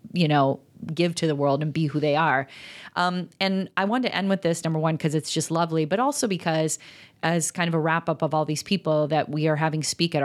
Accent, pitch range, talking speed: American, 150-170 Hz, 260 wpm